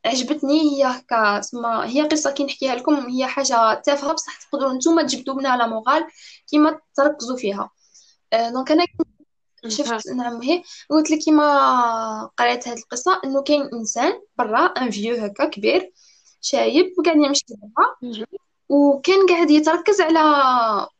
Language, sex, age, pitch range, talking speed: Arabic, female, 10-29, 240-315 Hz, 140 wpm